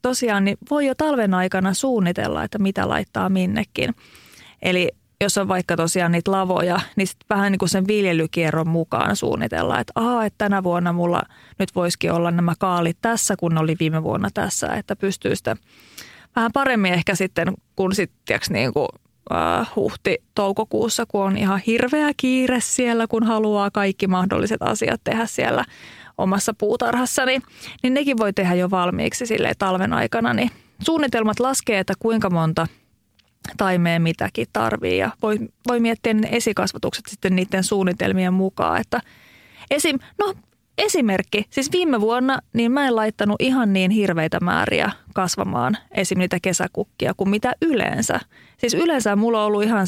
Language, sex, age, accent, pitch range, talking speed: Finnish, female, 30-49, native, 185-230 Hz, 150 wpm